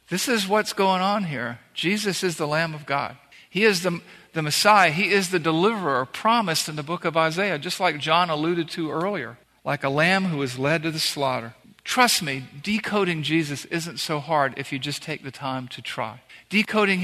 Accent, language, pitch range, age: American, English, 155-195 Hz, 50-69